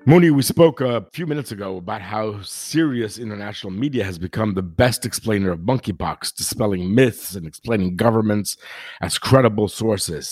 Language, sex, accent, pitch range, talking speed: English, male, American, 95-120 Hz, 155 wpm